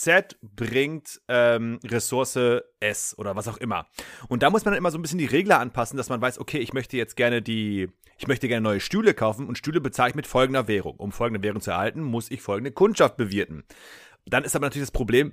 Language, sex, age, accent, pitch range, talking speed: German, male, 30-49, German, 110-145 Hz, 220 wpm